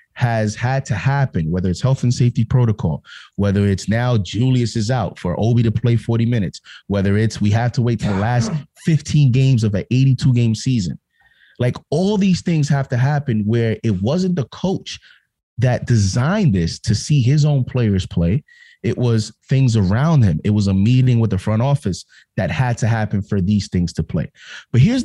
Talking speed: 195 wpm